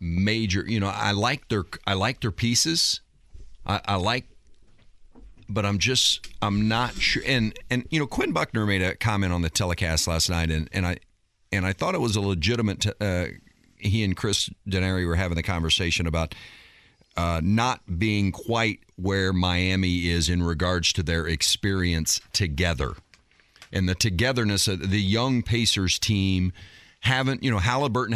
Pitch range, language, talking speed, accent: 90-115 Hz, English, 170 wpm, American